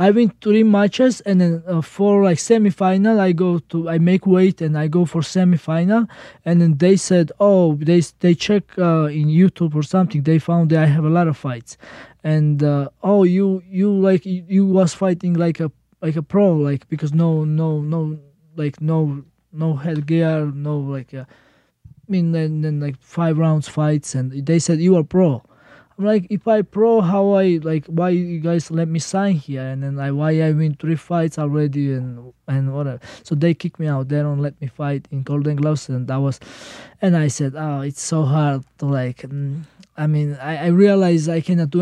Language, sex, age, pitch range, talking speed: English, male, 20-39, 145-175 Hz, 205 wpm